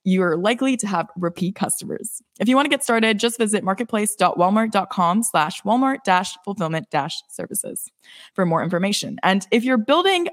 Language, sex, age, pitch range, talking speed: English, female, 20-39, 185-245 Hz, 140 wpm